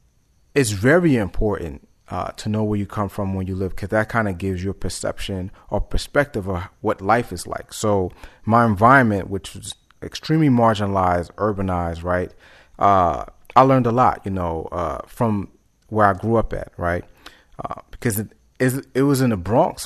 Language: English